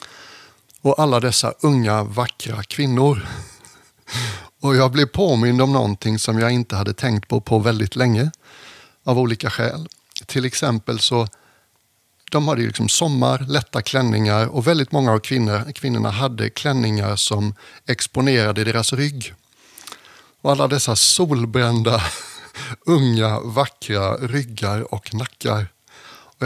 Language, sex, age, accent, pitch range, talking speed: English, male, 60-79, Swedish, 110-130 Hz, 125 wpm